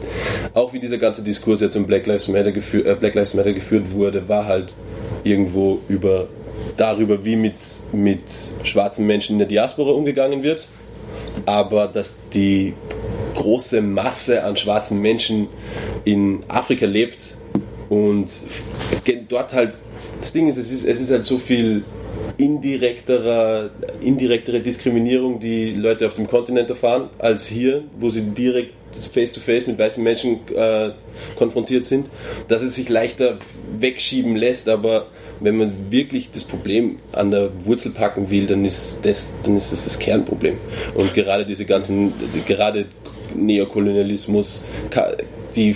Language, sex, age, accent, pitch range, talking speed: German, male, 20-39, German, 100-115 Hz, 130 wpm